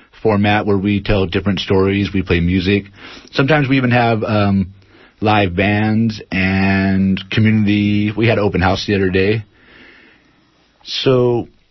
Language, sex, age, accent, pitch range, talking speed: English, male, 30-49, American, 95-115 Hz, 140 wpm